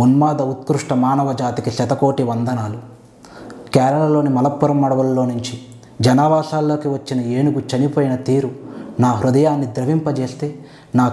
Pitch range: 120-150 Hz